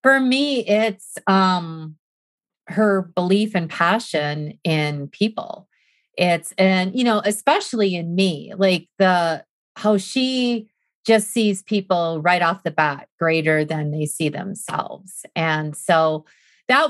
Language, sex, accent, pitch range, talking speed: English, female, American, 160-210 Hz, 130 wpm